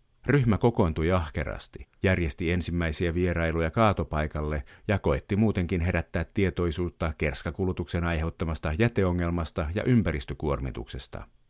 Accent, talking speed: native, 90 wpm